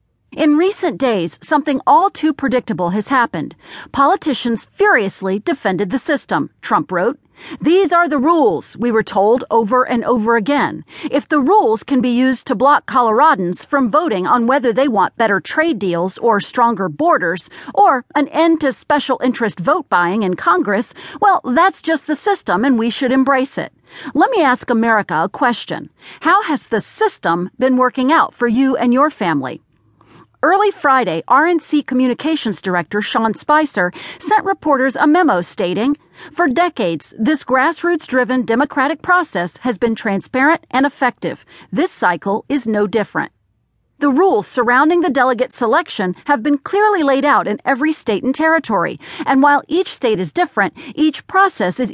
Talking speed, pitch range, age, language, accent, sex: 160 wpm, 225-315 Hz, 40-59, English, American, female